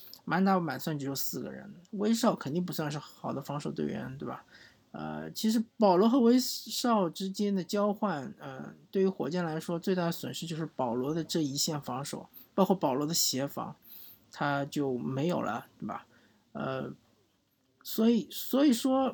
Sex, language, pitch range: male, Chinese, 155-205 Hz